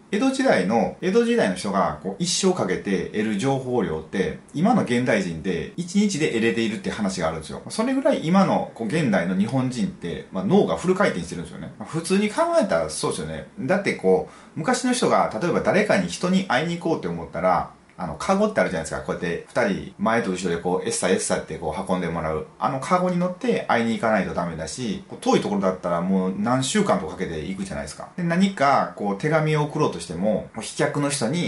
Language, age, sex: Japanese, 30-49, male